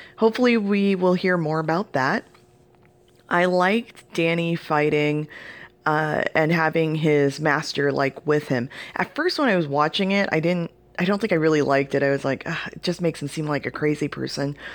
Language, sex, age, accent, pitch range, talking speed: English, female, 20-39, American, 145-190 Hz, 185 wpm